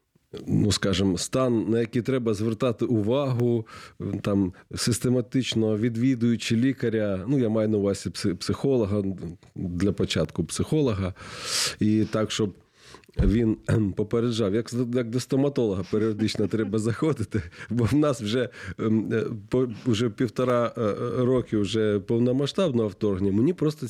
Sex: male